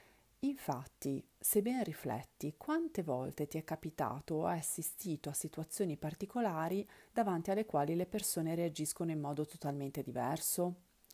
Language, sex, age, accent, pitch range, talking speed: Italian, female, 40-59, native, 150-185 Hz, 130 wpm